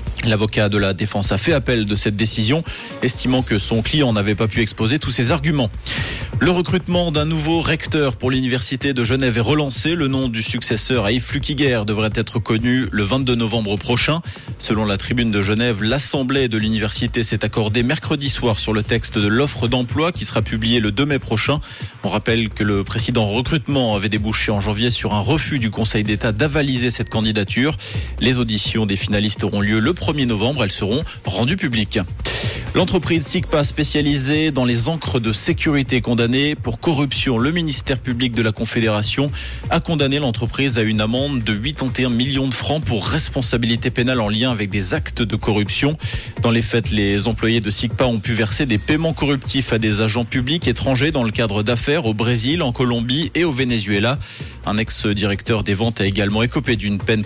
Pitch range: 110-135 Hz